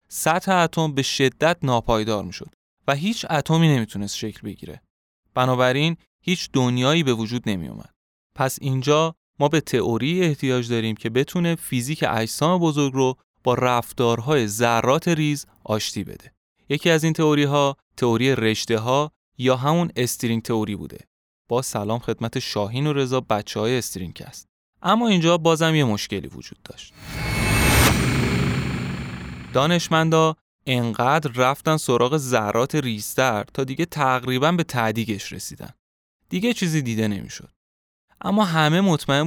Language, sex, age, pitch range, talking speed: Persian, male, 20-39, 115-160 Hz, 135 wpm